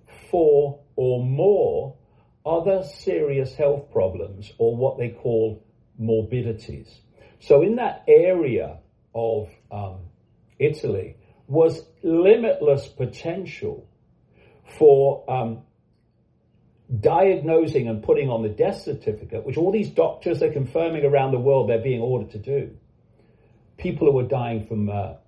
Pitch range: 110-165 Hz